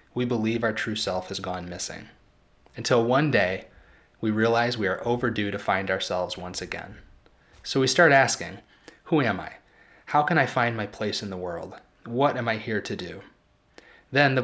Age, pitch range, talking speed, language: 30-49, 100-125 Hz, 185 wpm, English